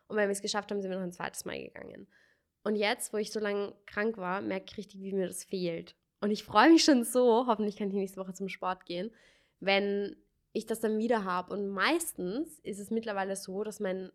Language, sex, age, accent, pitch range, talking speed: German, female, 20-39, German, 195-245 Hz, 240 wpm